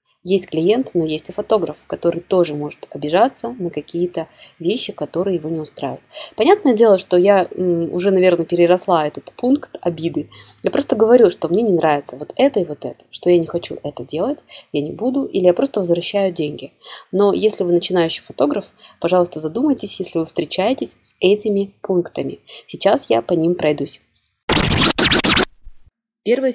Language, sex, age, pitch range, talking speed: Russian, female, 20-39, 150-195 Hz, 165 wpm